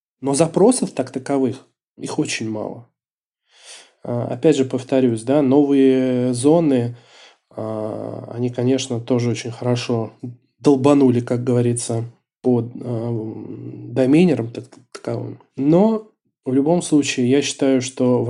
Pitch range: 120-140 Hz